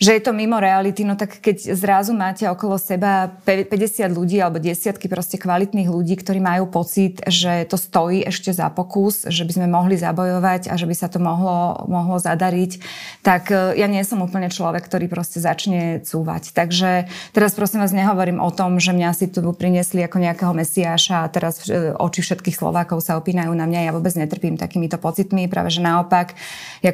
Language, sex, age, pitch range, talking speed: Slovak, female, 20-39, 175-190 Hz, 185 wpm